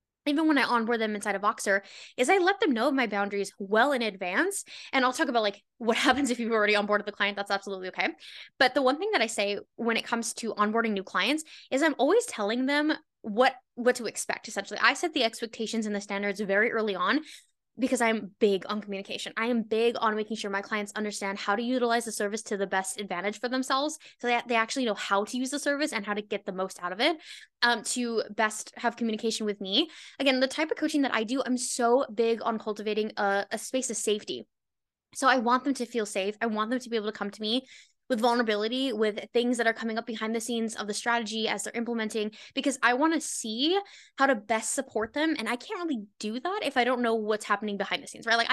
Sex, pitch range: female, 210-260 Hz